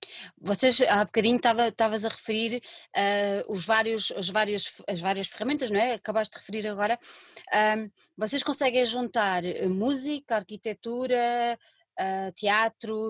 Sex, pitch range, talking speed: female, 220-290 Hz, 95 wpm